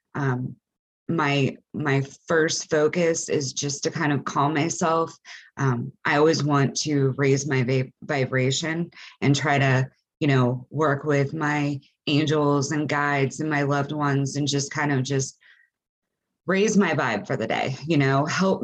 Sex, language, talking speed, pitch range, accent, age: female, English, 160 wpm, 135-155 Hz, American, 20-39